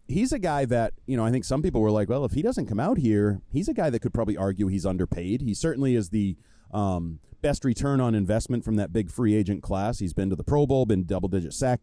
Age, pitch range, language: 30-49, 105-130 Hz, English